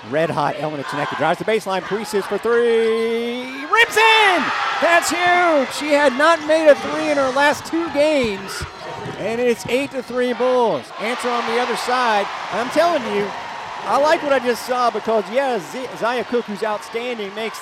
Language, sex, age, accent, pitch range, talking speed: English, male, 40-59, American, 190-255 Hz, 185 wpm